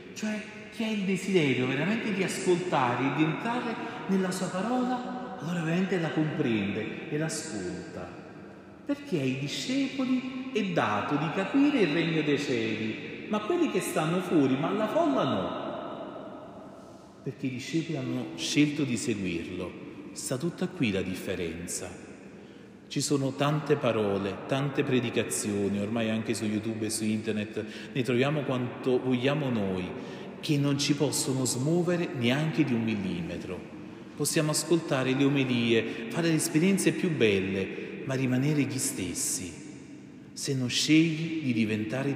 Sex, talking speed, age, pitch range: male, 140 wpm, 40-59, 115-175 Hz